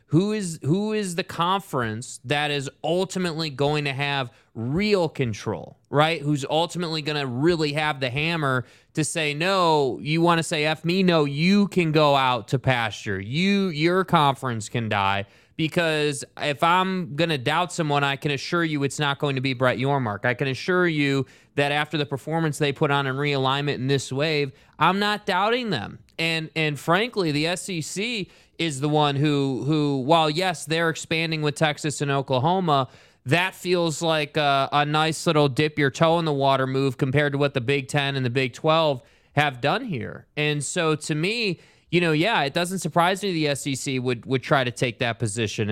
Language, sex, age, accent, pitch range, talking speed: English, male, 20-39, American, 135-165 Hz, 190 wpm